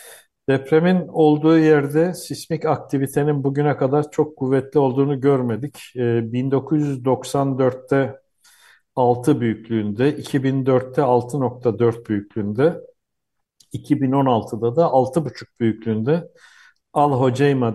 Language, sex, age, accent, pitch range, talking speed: Turkish, male, 60-79, native, 115-145 Hz, 80 wpm